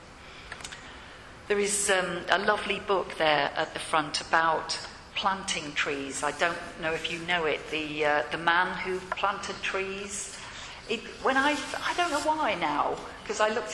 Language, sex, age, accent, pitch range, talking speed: English, female, 40-59, British, 155-205 Hz, 165 wpm